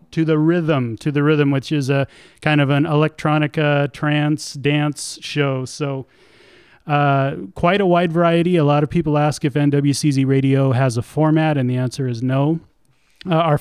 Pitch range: 135-150 Hz